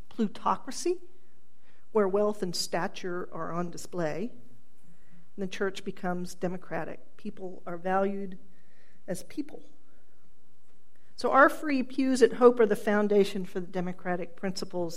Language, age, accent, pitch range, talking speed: English, 50-69, American, 185-225 Hz, 120 wpm